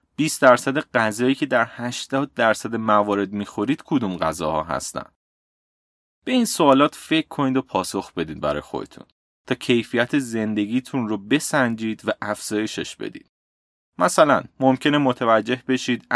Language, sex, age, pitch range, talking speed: Persian, male, 30-49, 100-135 Hz, 125 wpm